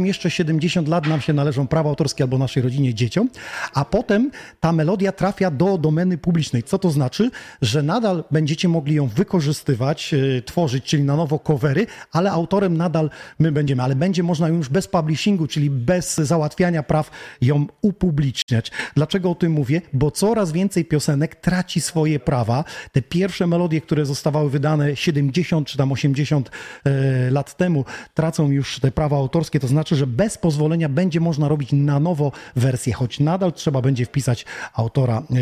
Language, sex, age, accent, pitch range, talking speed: Polish, male, 40-59, native, 145-175 Hz, 165 wpm